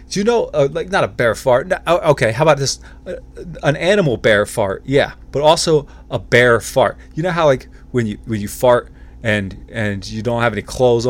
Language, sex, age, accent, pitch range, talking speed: English, male, 20-39, American, 110-140 Hz, 220 wpm